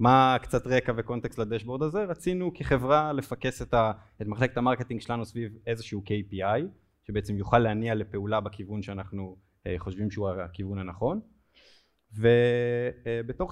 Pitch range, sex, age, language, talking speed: 110-140 Hz, male, 20-39, Hebrew, 120 wpm